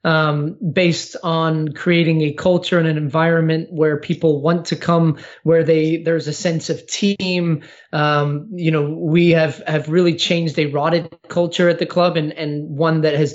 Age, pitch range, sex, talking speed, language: 20-39, 160-185 Hz, male, 180 wpm, English